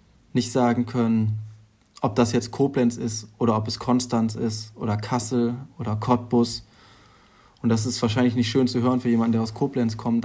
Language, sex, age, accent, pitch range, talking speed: German, male, 20-39, German, 110-120 Hz, 180 wpm